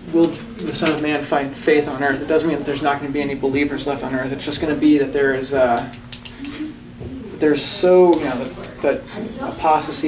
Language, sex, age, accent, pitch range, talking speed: English, male, 30-49, American, 140-180 Hz, 225 wpm